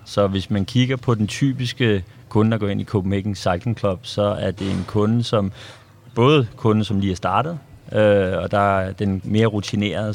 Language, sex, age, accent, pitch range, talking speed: Danish, male, 30-49, native, 100-115 Hz, 200 wpm